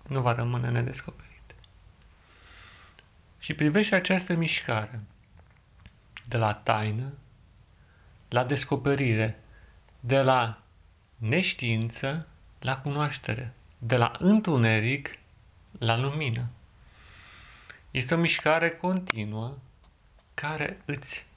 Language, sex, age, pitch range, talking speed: Romanian, male, 40-59, 110-145 Hz, 80 wpm